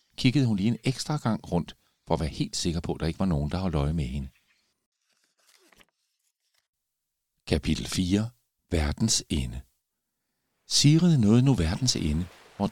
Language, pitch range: Danish, 85-125 Hz